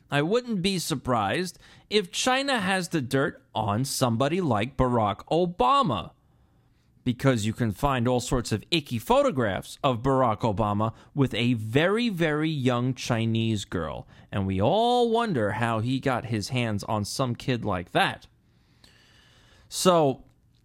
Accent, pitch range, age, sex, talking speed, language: American, 115-165 Hz, 30-49, male, 140 wpm, English